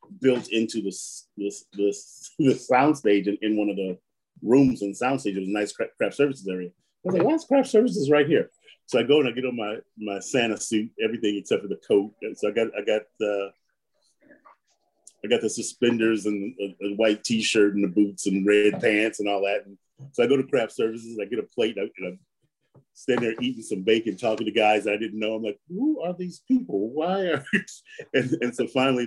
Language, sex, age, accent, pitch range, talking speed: English, male, 40-59, American, 110-170 Hz, 235 wpm